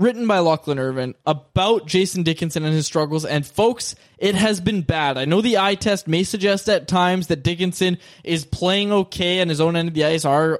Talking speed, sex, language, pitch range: 215 wpm, male, English, 140-180 Hz